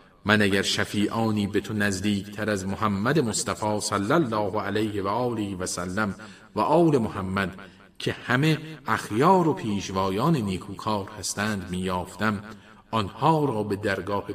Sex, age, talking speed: male, 40-59, 140 wpm